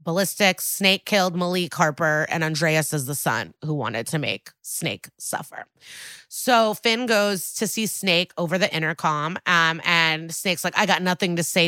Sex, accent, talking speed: female, American, 175 wpm